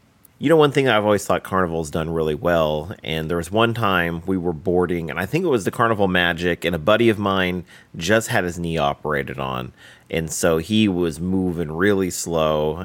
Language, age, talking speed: English, 30-49, 210 wpm